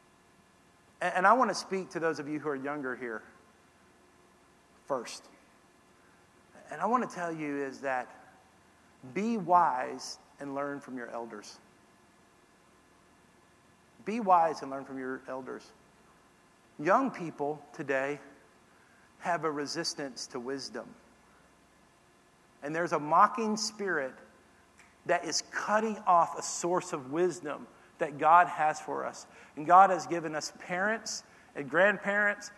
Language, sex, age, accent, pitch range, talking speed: English, male, 50-69, American, 140-195 Hz, 130 wpm